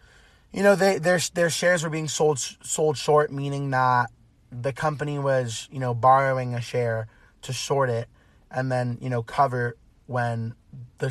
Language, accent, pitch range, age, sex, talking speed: English, American, 120-140 Hz, 20-39, male, 160 wpm